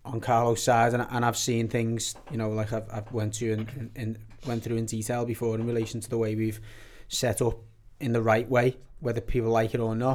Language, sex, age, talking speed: English, male, 30-49, 240 wpm